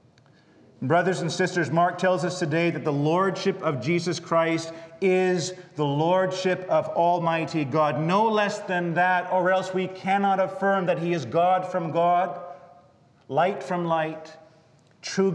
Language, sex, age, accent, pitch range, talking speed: English, male, 30-49, American, 165-195 Hz, 150 wpm